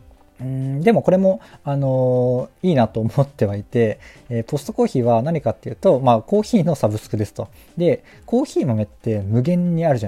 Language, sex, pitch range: Japanese, male, 115-160 Hz